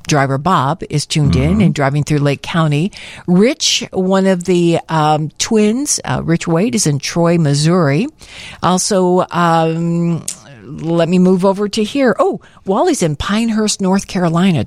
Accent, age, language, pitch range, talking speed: American, 50-69, English, 155-200 Hz, 150 wpm